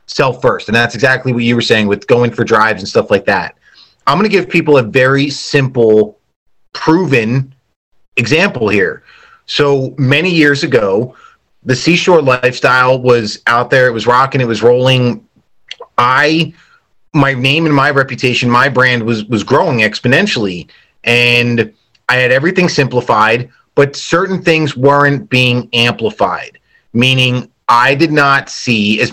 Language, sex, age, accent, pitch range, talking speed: English, male, 30-49, American, 120-150 Hz, 150 wpm